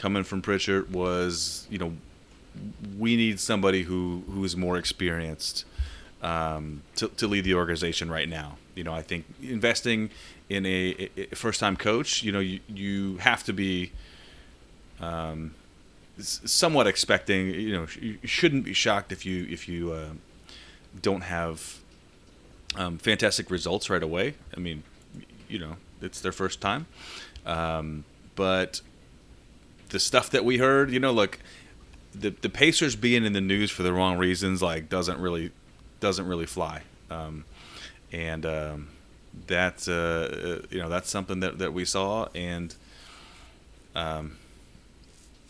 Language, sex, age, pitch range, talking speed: English, male, 30-49, 80-95 Hz, 145 wpm